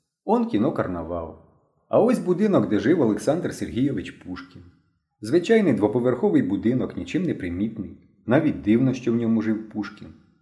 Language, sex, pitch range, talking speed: Ukrainian, male, 110-170 Hz, 130 wpm